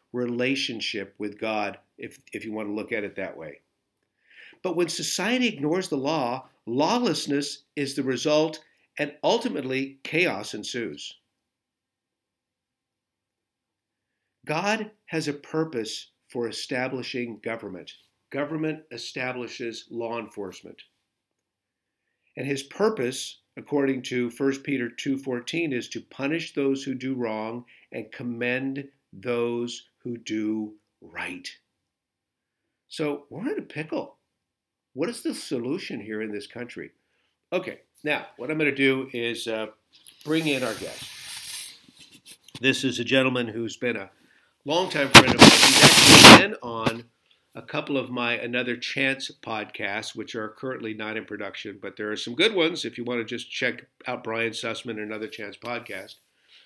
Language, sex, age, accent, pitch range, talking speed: English, male, 50-69, American, 115-140 Hz, 140 wpm